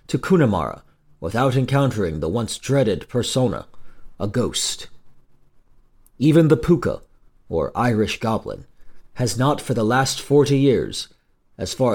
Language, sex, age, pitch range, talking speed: English, male, 40-59, 105-145 Hz, 120 wpm